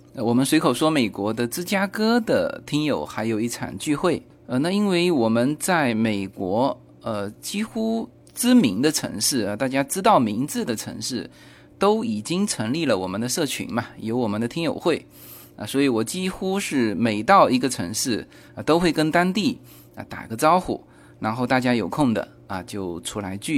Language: Chinese